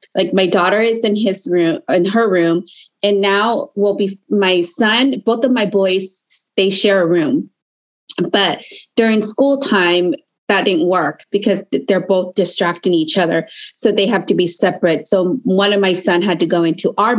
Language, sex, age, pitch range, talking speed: English, female, 30-49, 175-225 Hz, 185 wpm